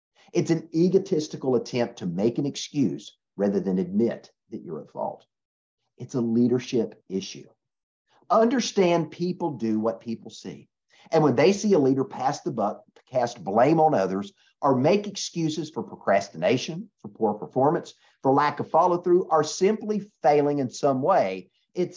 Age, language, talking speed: 50-69, English, 155 wpm